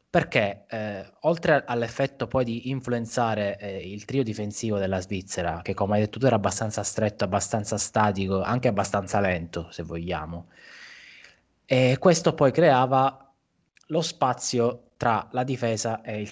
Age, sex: 20-39, male